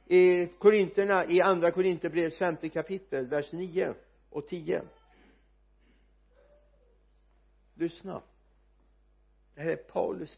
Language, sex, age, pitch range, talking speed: Swedish, male, 60-79, 150-190 Hz, 95 wpm